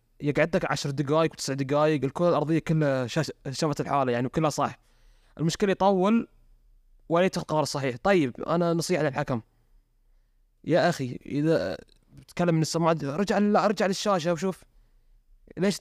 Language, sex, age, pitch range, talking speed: Arabic, male, 20-39, 140-170 Hz, 135 wpm